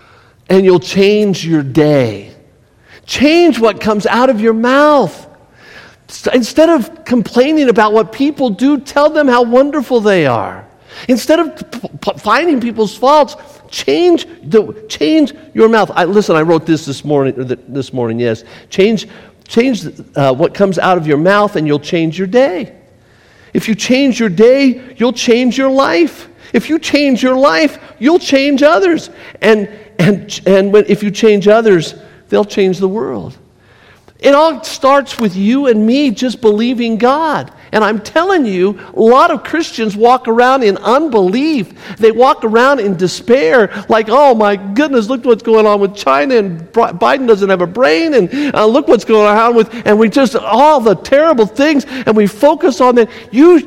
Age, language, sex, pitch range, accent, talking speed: 50-69, English, male, 195-270 Hz, American, 180 wpm